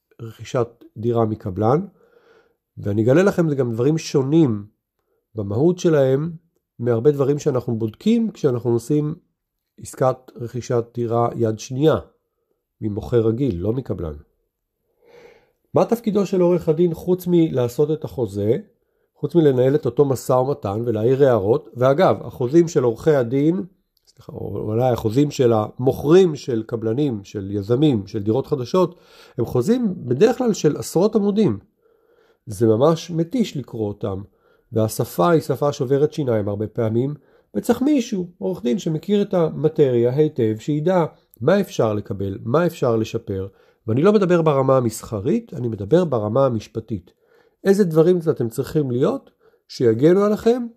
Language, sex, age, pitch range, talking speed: Hebrew, male, 50-69, 115-175 Hz, 130 wpm